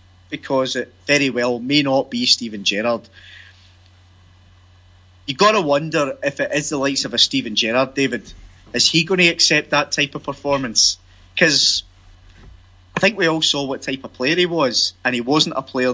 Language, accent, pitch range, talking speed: English, British, 90-155 Hz, 185 wpm